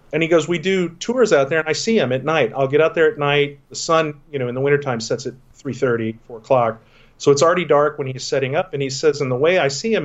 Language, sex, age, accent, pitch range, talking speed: English, male, 40-59, American, 130-155 Hz, 305 wpm